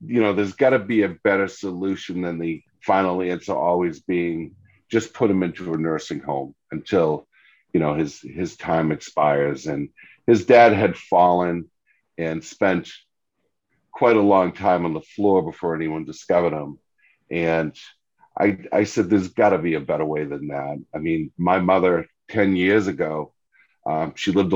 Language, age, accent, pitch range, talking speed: English, 50-69, American, 80-95 Hz, 170 wpm